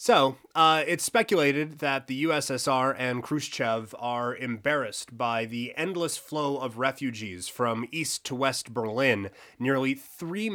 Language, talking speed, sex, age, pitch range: English, 135 wpm, male, 30-49, 120-150 Hz